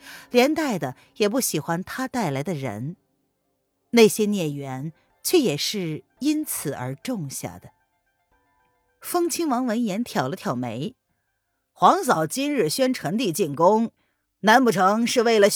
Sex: female